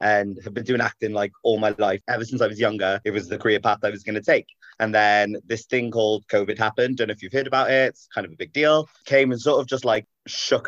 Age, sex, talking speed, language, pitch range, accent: 30-49, male, 290 wpm, English, 100-125 Hz, British